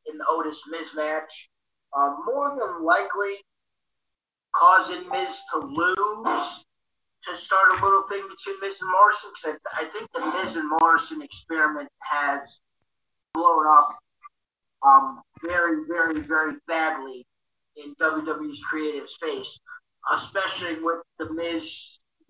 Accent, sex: American, male